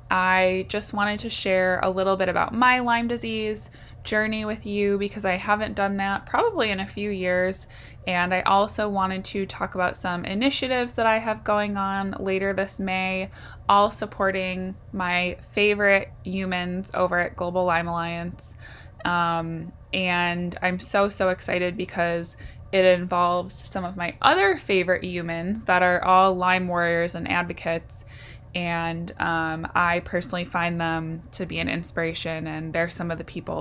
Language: English